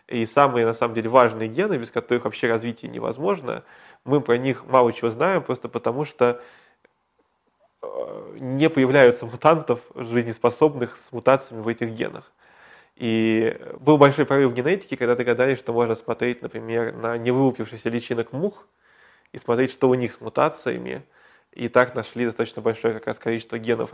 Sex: male